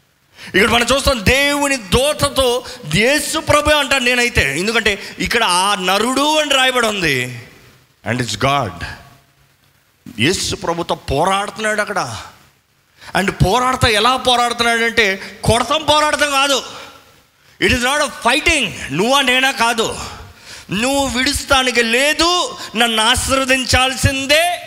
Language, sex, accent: Telugu, male, native